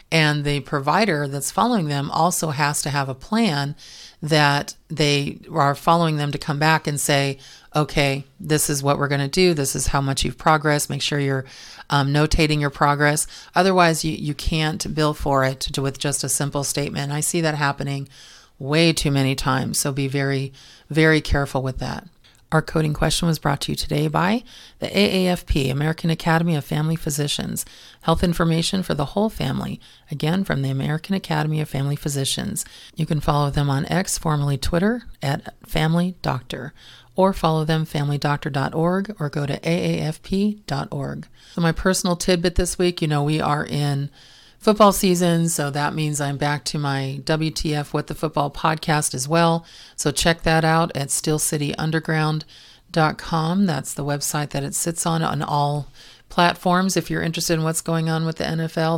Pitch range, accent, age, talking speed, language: 140-165 Hz, American, 40-59, 175 wpm, English